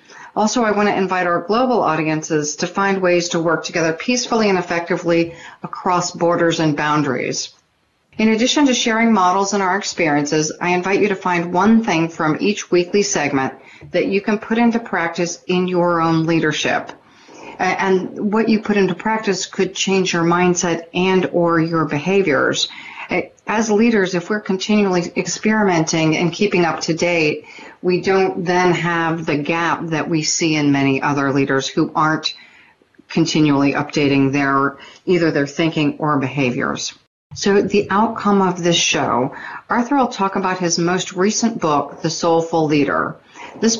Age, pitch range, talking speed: 40-59, 160-205 Hz, 160 wpm